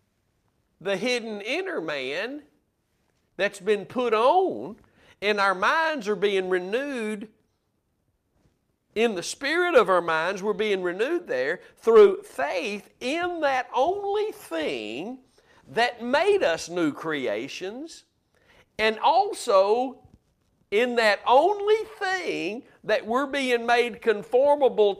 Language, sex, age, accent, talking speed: English, male, 50-69, American, 110 wpm